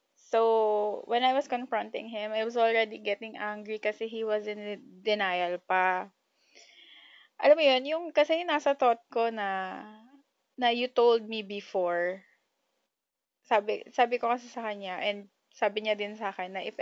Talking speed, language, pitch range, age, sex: 160 wpm, Filipino, 200-270 Hz, 20-39, female